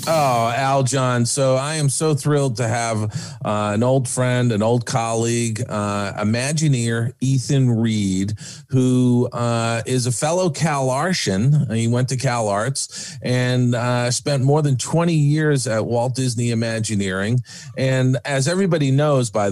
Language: English